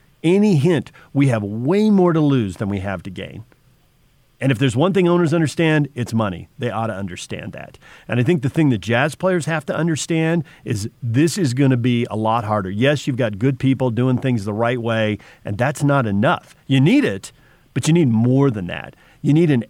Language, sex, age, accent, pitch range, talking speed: English, male, 40-59, American, 115-155 Hz, 220 wpm